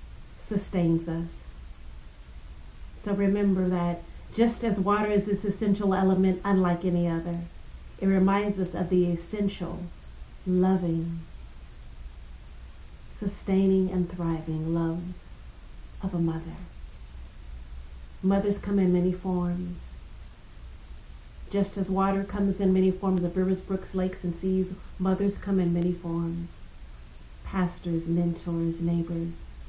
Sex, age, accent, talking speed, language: female, 40-59, American, 110 wpm, English